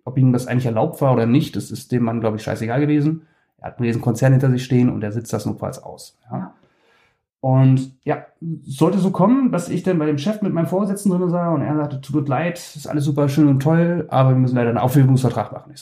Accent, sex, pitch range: German, male, 120-150 Hz